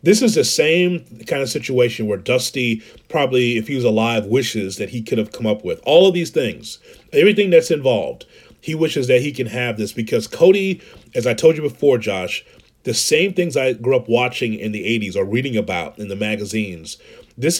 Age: 30-49